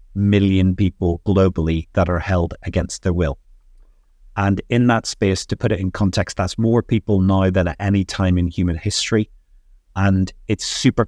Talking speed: 175 wpm